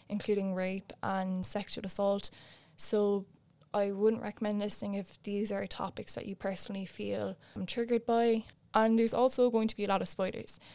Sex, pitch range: female, 195-225 Hz